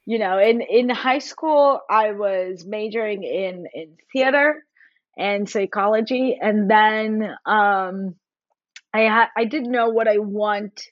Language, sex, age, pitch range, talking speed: English, female, 20-39, 200-250 Hz, 135 wpm